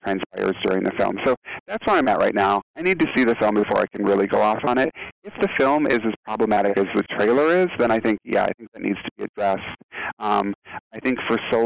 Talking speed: 260 wpm